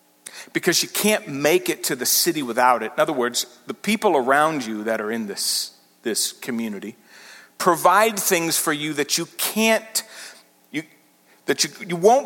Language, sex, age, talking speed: English, male, 50-69, 170 wpm